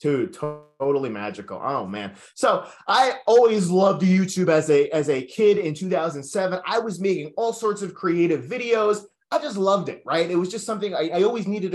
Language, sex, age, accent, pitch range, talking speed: English, male, 20-39, American, 150-200 Hz, 190 wpm